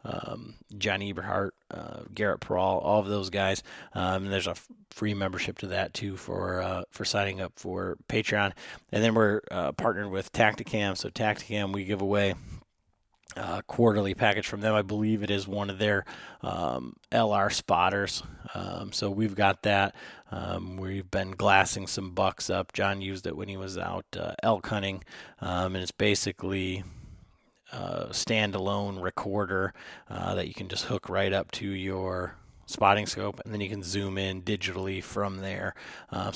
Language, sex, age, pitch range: English, male, 30-49, 95-105 Hz